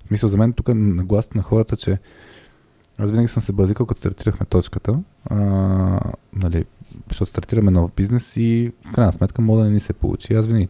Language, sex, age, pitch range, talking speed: Bulgarian, male, 20-39, 95-115 Hz, 200 wpm